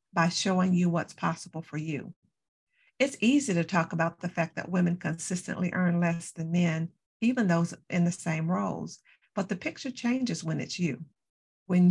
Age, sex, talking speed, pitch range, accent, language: 50-69, female, 175 wpm, 170-215 Hz, American, English